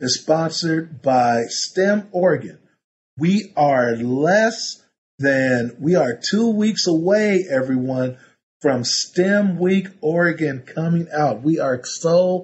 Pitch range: 140-185 Hz